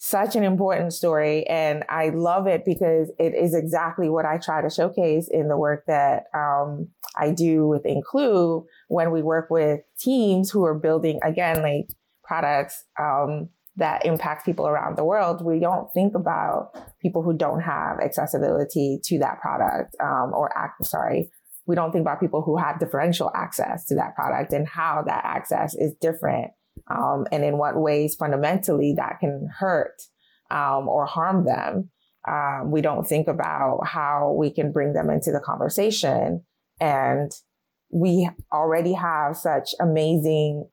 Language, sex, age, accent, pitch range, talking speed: English, female, 20-39, American, 150-175 Hz, 160 wpm